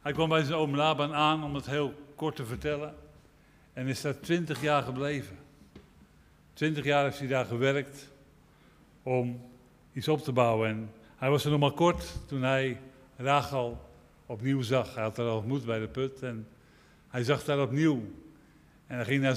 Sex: male